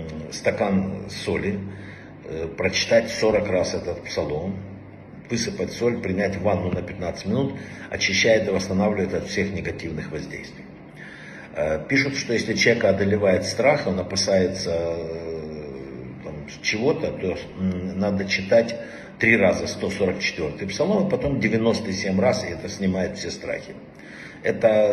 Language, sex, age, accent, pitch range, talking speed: Russian, male, 50-69, native, 90-105 Hz, 120 wpm